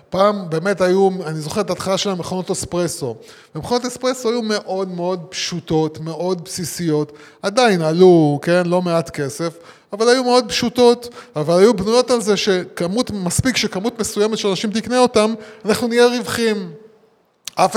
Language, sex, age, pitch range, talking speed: Hebrew, male, 20-39, 155-195 Hz, 150 wpm